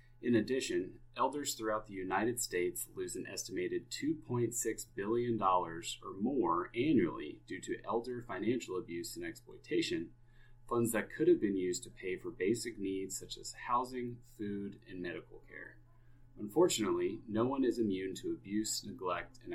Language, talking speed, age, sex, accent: English, 150 wpm, 30-49, male, American